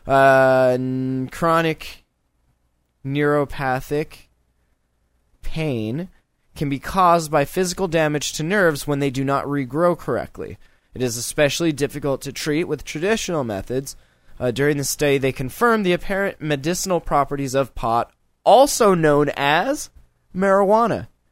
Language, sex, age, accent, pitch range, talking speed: English, male, 20-39, American, 130-185 Hz, 120 wpm